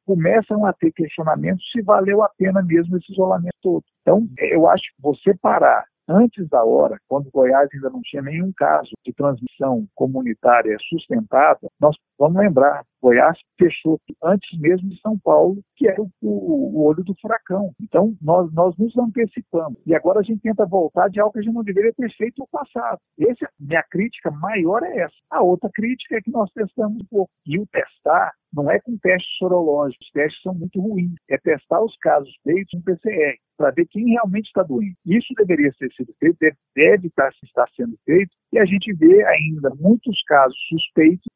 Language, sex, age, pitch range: Portuguese, male, 50-69, 160-215 Hz